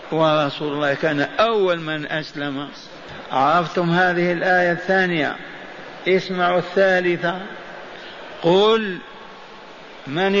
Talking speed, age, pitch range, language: 80 wpm, 50-69, 175-210 Hz, Arabic